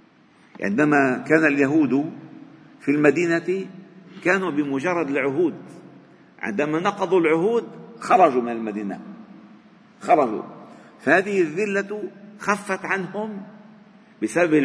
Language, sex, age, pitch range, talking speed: Arabic, male, 50-69, 130-195 Hz, 80 wpm